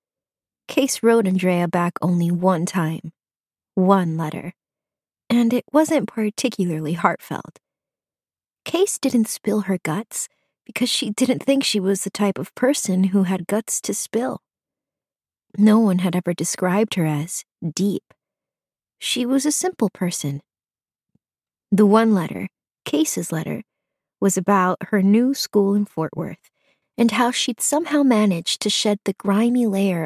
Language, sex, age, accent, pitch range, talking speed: English, female, 30-49, American, 180-230 Hz, 140 wpm